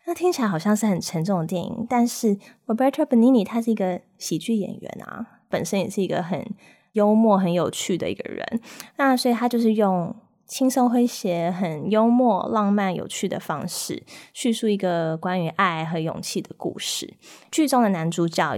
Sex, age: female, 20-39